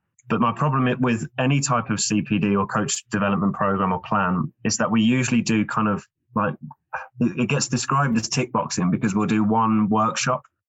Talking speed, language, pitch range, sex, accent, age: 185 wpm, English, 105-125 Hz, male, British, 20-39